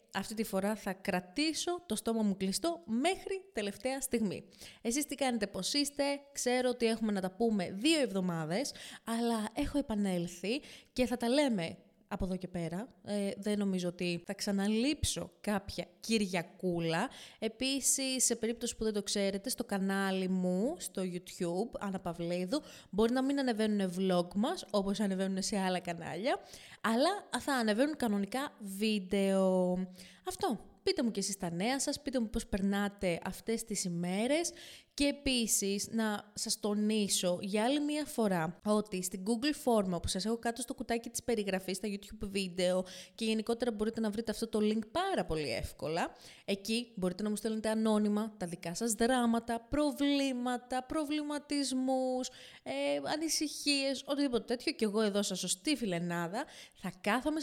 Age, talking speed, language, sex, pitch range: 20-39, 155 wpm, Greek, female, 195-260 Hz